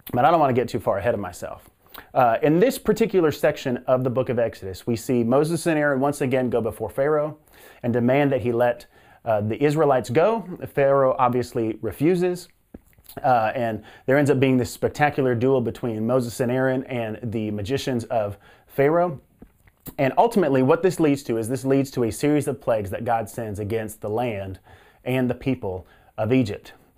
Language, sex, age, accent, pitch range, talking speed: English, male, 30-49, American, 115-155 Hz, 190 wpm